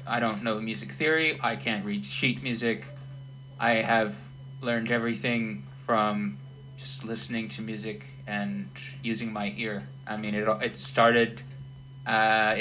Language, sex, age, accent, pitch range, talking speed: English, male, 20-39, American, 110-135 Hz, 140 wpm